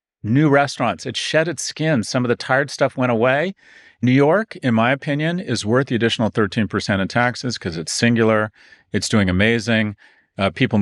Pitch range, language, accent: 100-135 Hz, English, American